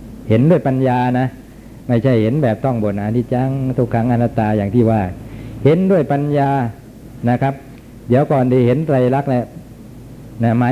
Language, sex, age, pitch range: Thai, male, 60-79, 110-135 Hz